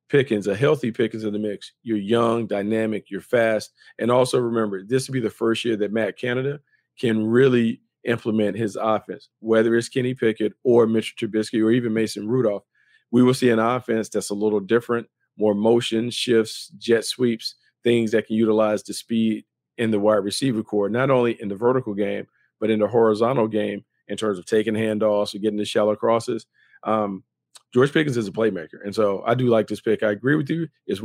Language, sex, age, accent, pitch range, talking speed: English, male, 40-59, American, 105-120 Hz, 200 wpm